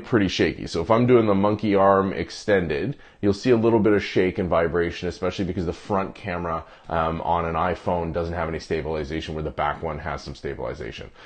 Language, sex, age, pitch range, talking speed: English, male, 30-49, 90-120 Hz, 210 wpm